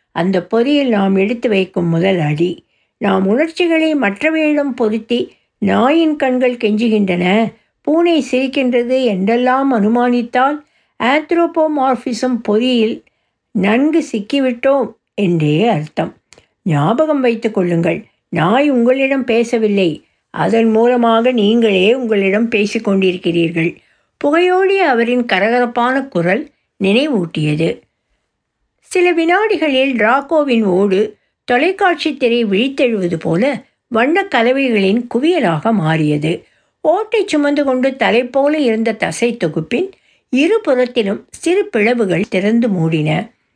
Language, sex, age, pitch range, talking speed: Tamil, female, 60-79, 195-275 Hz, 90 wpm